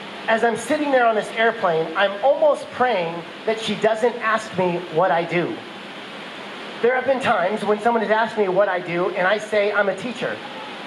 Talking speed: 200 wpm